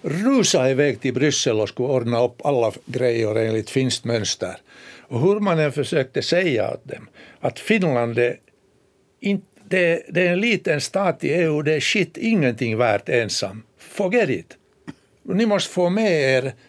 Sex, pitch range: male, 125-175 Hz